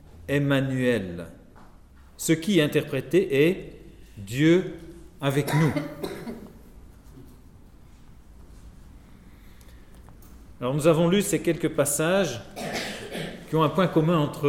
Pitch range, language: 115-165 Hz, French